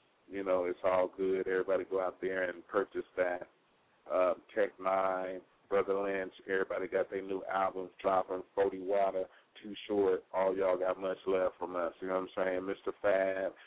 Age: 30-49